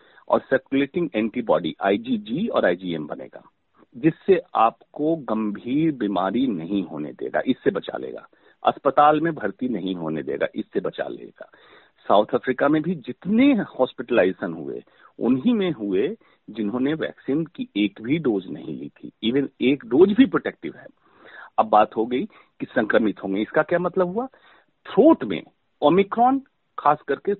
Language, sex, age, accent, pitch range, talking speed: Hindi, male, 50-69, native, 125-190 Hz, 145 wpm